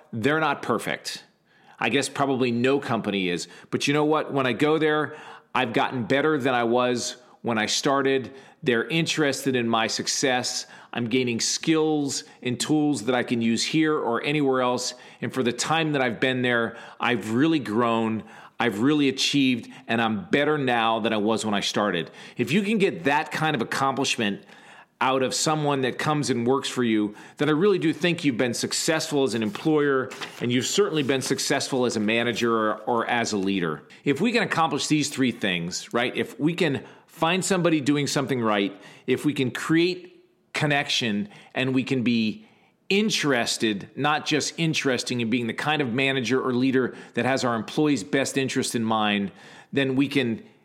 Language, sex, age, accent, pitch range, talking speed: English, male, 40-59, American, 120-150 Hz, 185 wpm